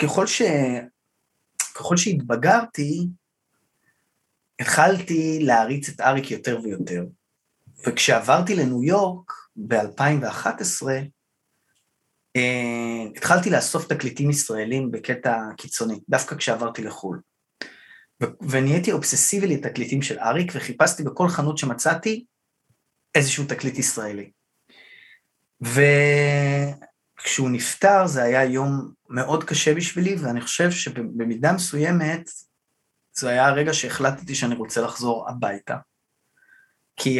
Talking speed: 90 wpm